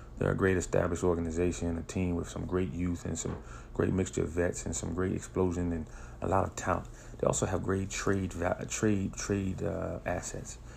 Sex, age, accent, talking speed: male, 30-49, American, 195 wpm